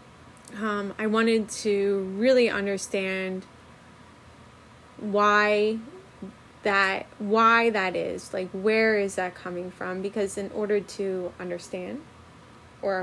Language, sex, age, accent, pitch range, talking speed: English, female, 20-39, American, 185-215 Hz, 105 wpm